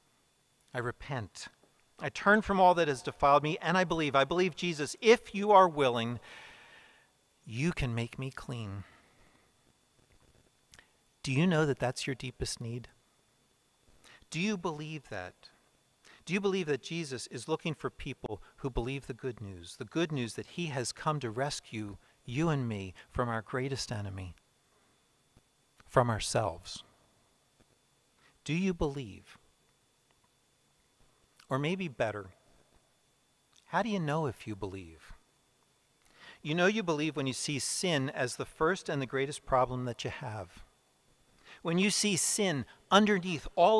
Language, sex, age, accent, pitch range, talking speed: English, male, 40-59, American, 125-175 Hz, 145 wpm